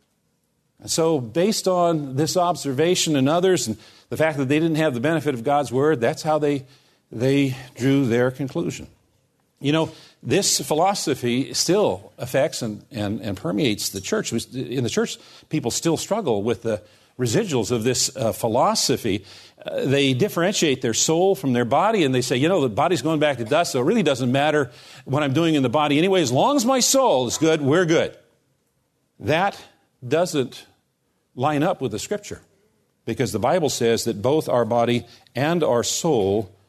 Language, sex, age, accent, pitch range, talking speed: English, male, 50-69, American, 115-155 Hz, 180 wpm